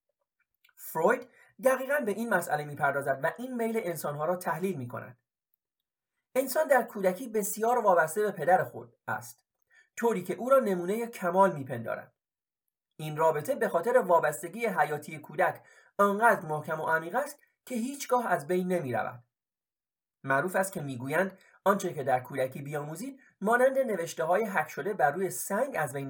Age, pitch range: 40-59, 155-240 Hz